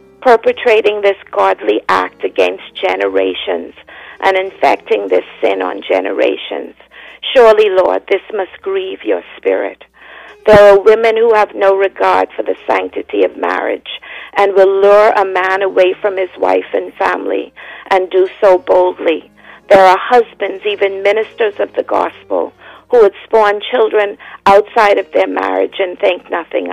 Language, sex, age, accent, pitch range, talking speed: English, female, 50-69, American, 190-240 Hz, 145 wpm